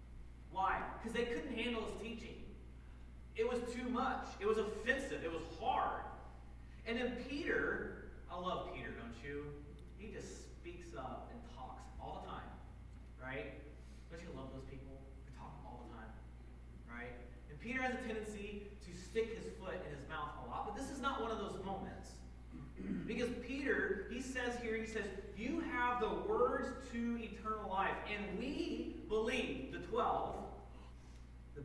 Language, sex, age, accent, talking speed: English, male, 30-49, American, 165 wpm